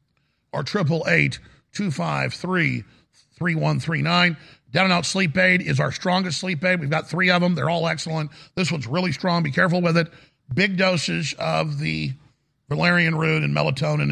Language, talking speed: English, 155 wpm